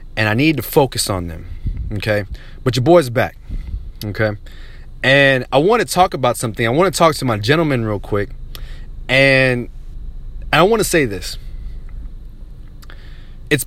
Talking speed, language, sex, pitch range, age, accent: 160 wpm, English, male, 110-140 Hz, 30-49, American